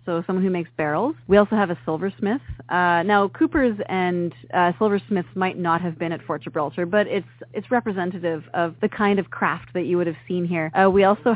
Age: 30-49